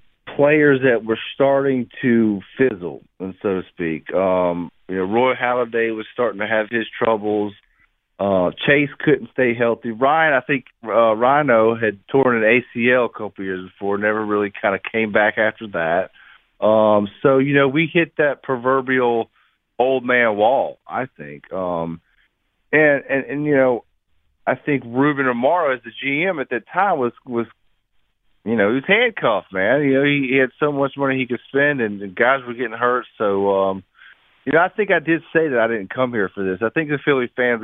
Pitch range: 100-135 Hz